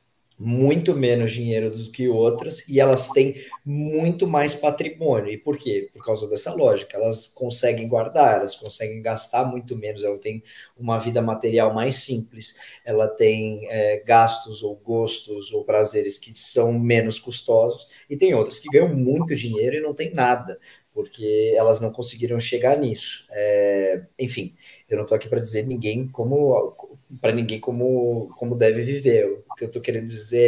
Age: 20-39